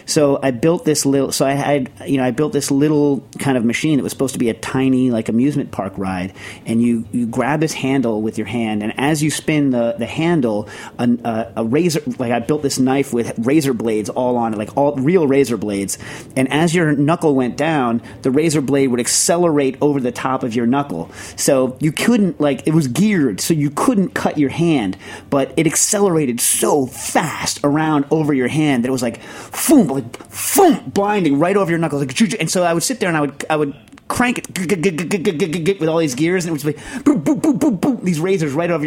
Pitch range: 120-160 Hz